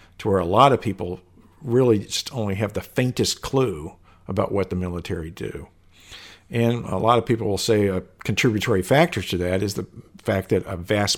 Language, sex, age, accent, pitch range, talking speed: English, male, 50-69, American, 95-120 Hz, 195 wpm